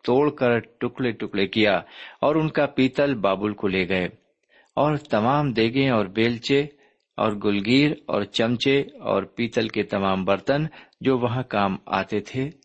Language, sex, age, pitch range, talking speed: Urdu, male, 50-69, 100-135 Hz, 150 wpm